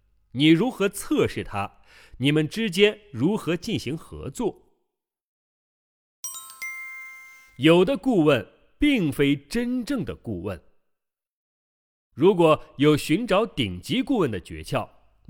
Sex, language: male, Chinese